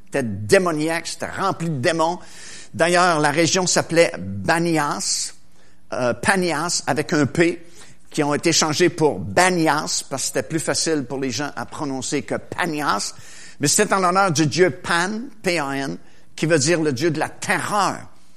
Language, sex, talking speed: French, male, 160 wpm